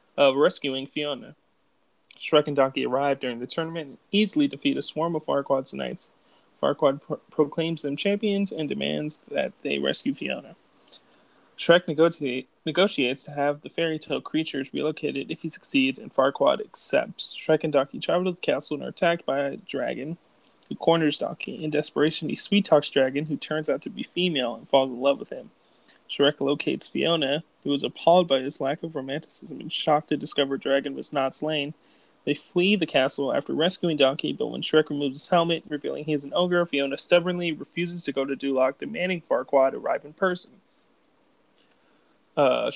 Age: 20-39